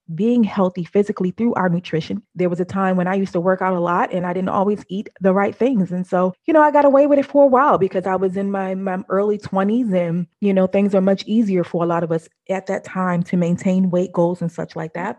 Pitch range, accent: 175-210 Hz, American